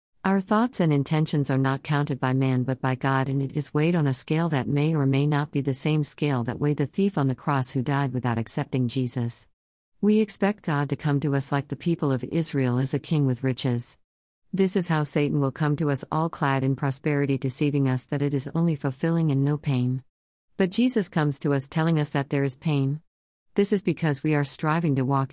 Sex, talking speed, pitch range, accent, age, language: female, 230 wpm, 130-155 Hz, American, 50-69, English